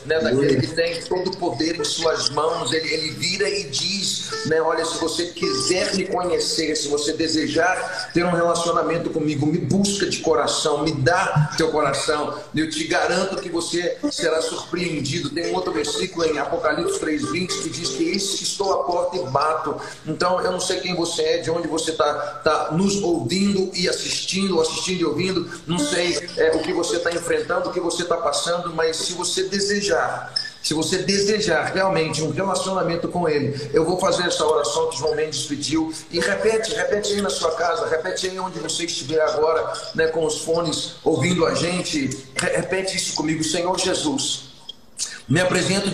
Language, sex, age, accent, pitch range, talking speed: Portuguese, male, 40-59, Brazilian, 155-185 Hz, 185 wpm